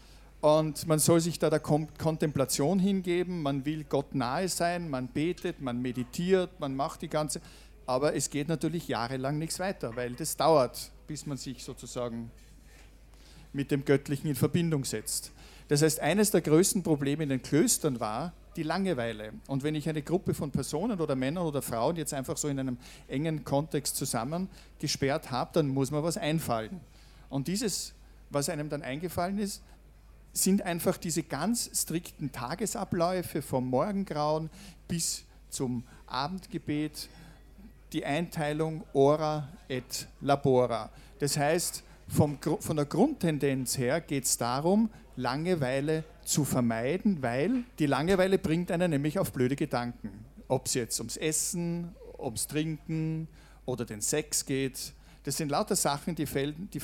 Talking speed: 150 wpm